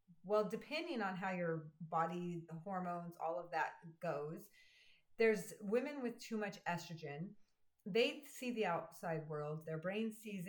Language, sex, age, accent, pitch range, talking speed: English, female, 30-49, American, 160-210 Hz, 150 wpm